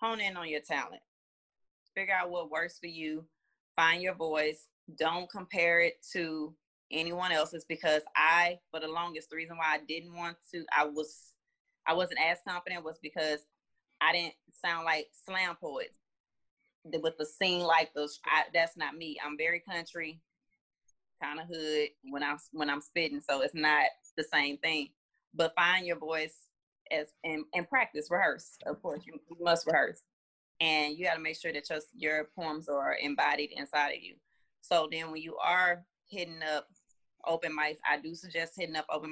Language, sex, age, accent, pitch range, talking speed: English, female, 30-49, American, 155-180 Hz, 175 wpm